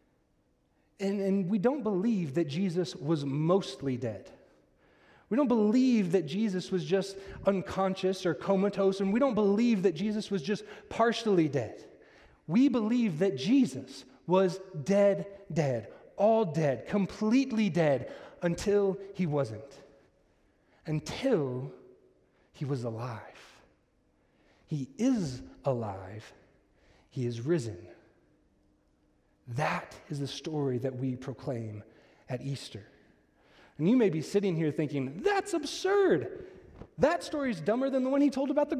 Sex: male